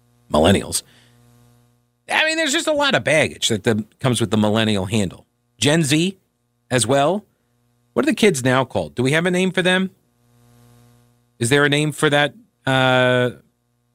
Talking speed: 170 wpm